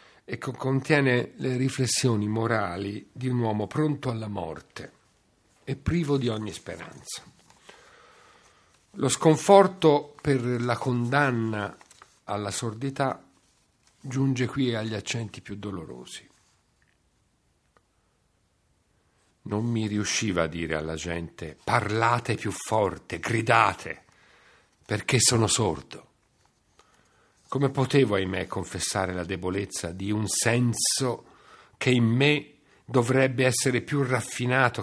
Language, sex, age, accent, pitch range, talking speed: Italian, male, 50-69, native, 105-140 Hz, 100 wpm